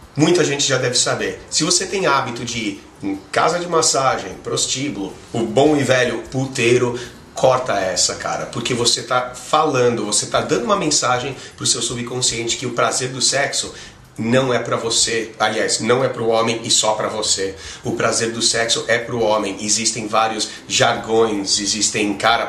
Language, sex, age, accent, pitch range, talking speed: Portuguese, male, 30-49, Brazilian, 105-125 Hz, 175 wpm